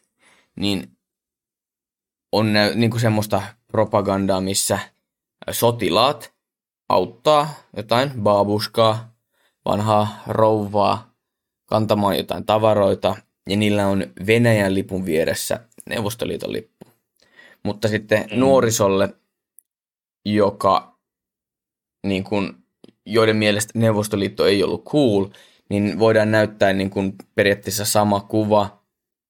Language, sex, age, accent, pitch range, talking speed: Finnish, male, 20-39, native, 100-110 Hz, 80 wpm